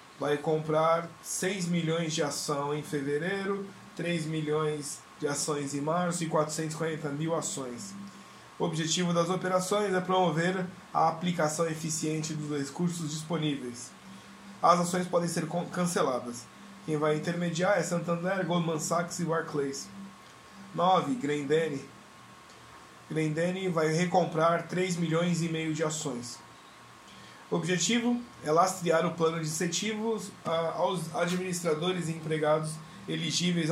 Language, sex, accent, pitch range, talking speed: Portuguese, male, Brazilian, 150-175 Hz, 120 wpm